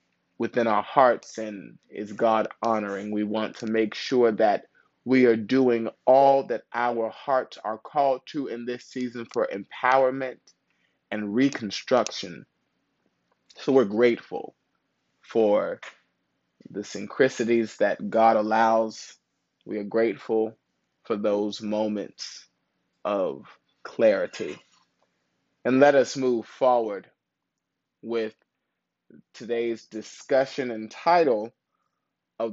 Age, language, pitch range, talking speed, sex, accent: 20-39, English, 110-135 Hz, 105 wpm, male, American